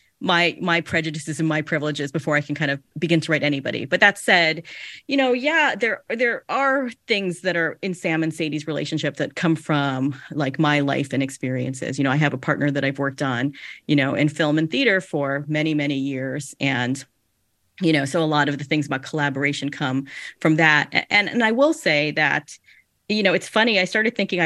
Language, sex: English, female